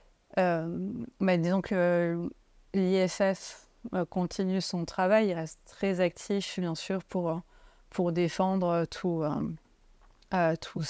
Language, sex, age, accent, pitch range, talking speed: French, female, 30-49, French, 170-190 Hz, 100 wpm